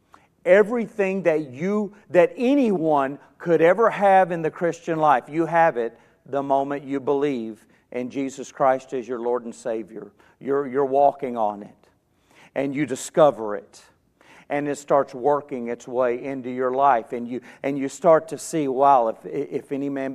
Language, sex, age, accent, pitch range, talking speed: English, male, 50-69, American, 125-155 Hz, 170 wpm